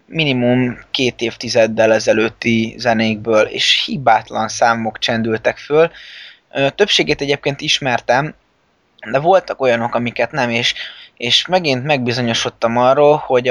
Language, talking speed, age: Hungarian, 110 wpm, 20-39